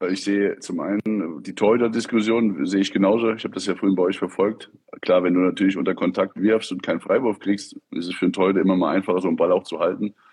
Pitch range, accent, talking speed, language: 95-110 Hz, German, 245 wpm, German